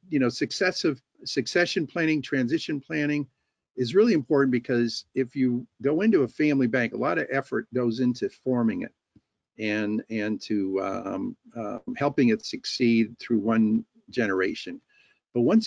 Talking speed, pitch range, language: 150 wpm, 110-145 Hz, English